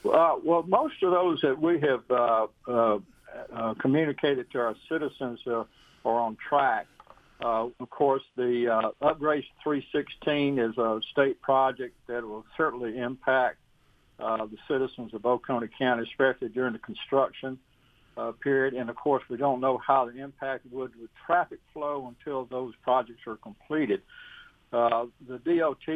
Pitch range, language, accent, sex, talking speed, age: 120-145 Hz, English, American, male, 155 wpm, 60-79